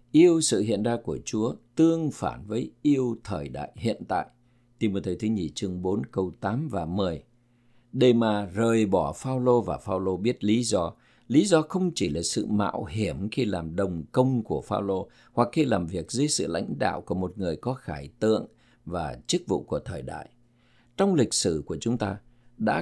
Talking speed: 200 wpm